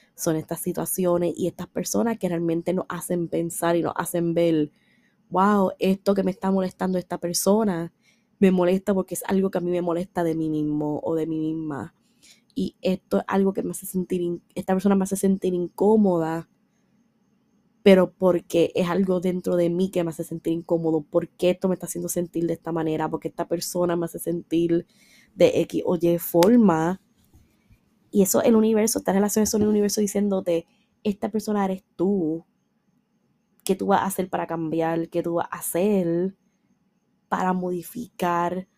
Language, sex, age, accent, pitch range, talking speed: Spanish, female, 20-39, American, 170-210 Hz, 180 wpm